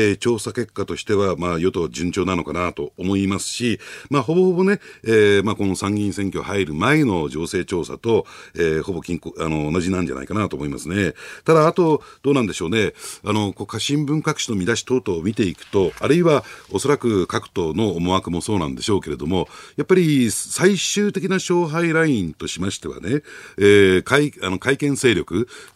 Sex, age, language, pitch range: male, 50-69, Japanese, 95-145 Hz